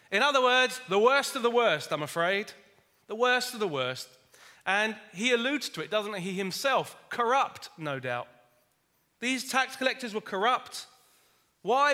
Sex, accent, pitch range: male, British, 190-265 Hz